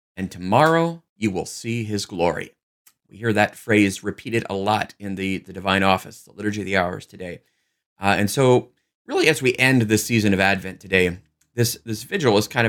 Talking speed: 200 wpm